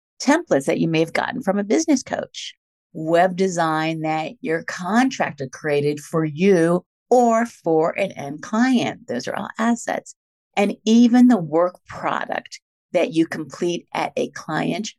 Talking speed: 150 wpm